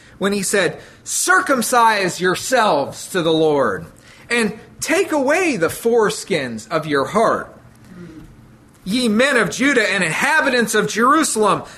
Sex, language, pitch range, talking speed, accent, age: male, English, 170-250 Hz, 120 wpm, American, 40-59